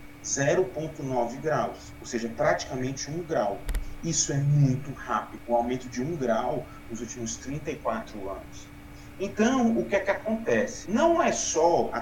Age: 30-49